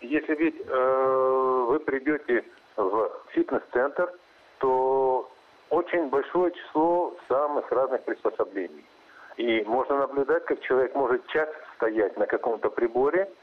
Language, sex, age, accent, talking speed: Russian, male, 50-69, native, 110 wpm